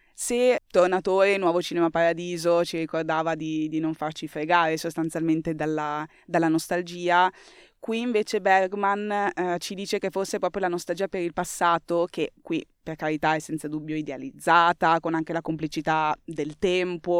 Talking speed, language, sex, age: 155 wpm, Italian, female, 20-39